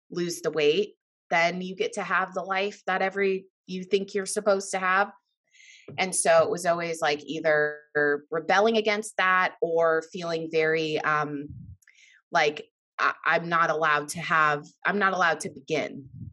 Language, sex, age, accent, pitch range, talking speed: English, female, 20-39, American, 160-200 Hz, 160 wpm